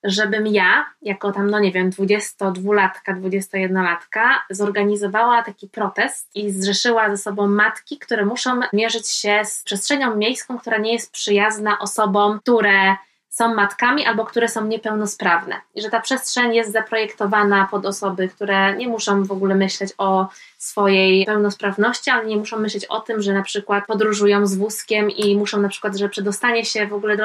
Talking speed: 165 wpm